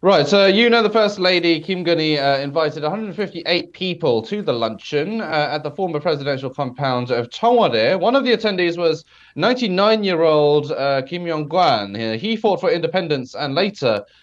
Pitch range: 135-185 Hz